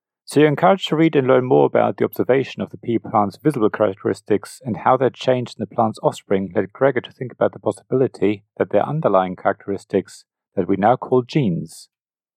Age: 40-59